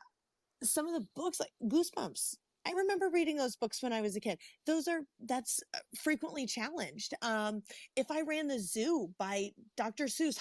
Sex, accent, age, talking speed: female, American, 30-49, 175 wpm